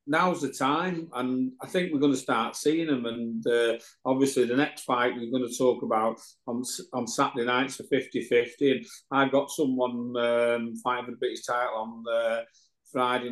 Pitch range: 125-145 Hz